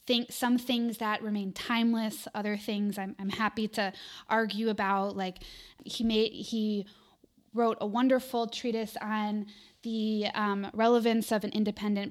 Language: English